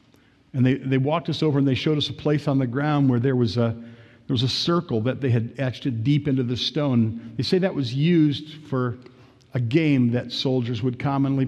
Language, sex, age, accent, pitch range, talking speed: English, male, 50-69, American, 115-135 Hz, 225 wpm